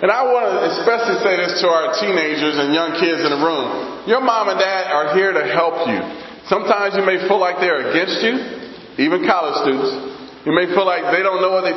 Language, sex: English, male